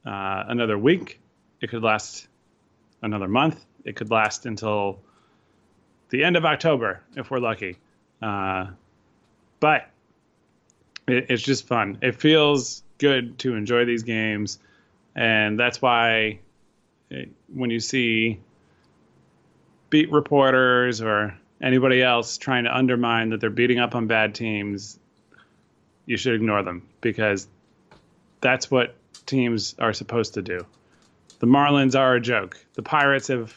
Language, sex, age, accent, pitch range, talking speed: English, male, 20-39, American, 105-130 Hz, 130 wpm